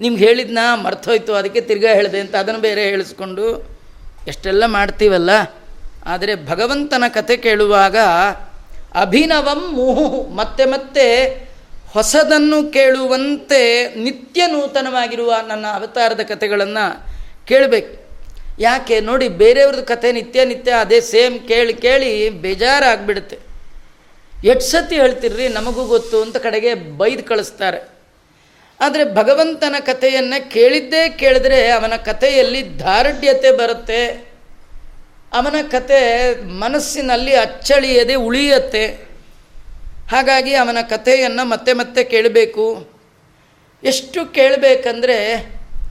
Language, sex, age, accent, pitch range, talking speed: Kannada, female, 30-49, native, 225-285 Hz, 90 wpm